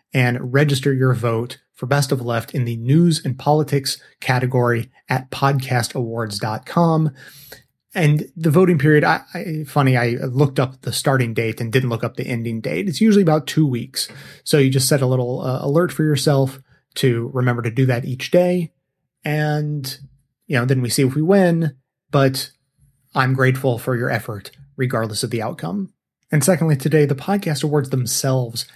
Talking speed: 175 wpm